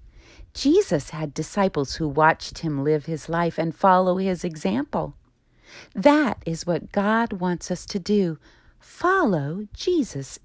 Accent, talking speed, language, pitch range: American, 130 wpm, English, 145-235 Hz